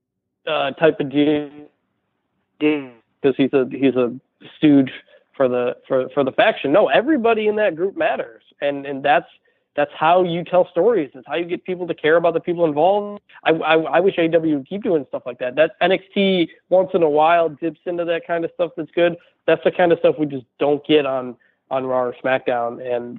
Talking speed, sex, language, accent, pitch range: 210 wpm, male, English, American, 135-165 Hz